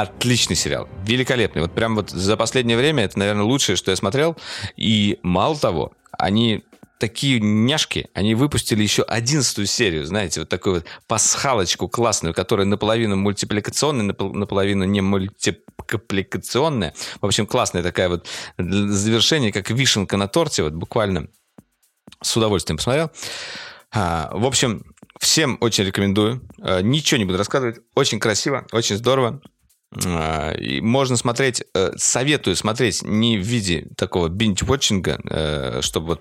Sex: male